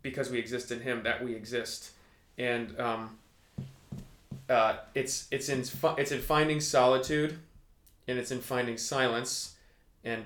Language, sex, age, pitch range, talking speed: English, male, 20-39, 105-130 Hz, 145 wpm